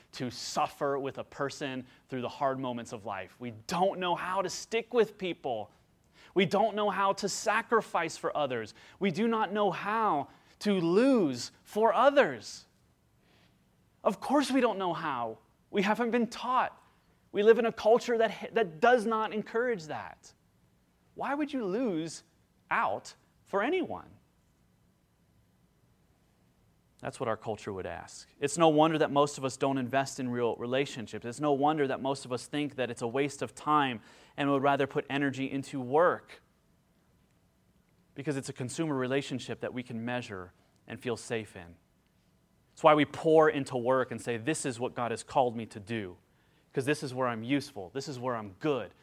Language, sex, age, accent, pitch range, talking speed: English, male, 30-49, American, 125-185 Hz, 175 wpm